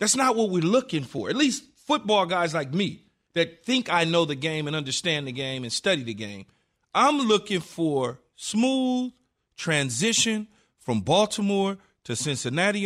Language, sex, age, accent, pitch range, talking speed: English, male, 40-59, American, 170-235 Hz, 165 wpm